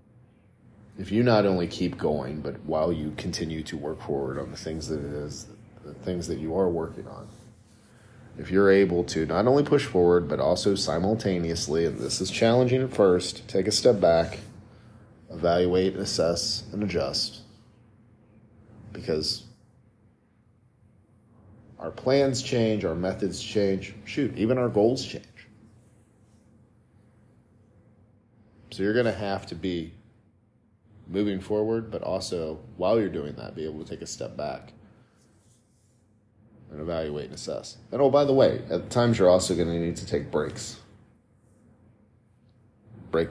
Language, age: English, 40-59